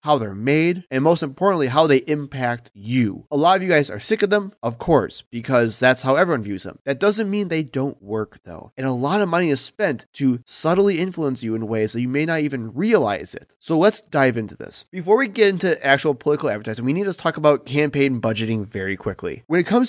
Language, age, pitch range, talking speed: English, 20-39, 125-175 Hz, 235 wpm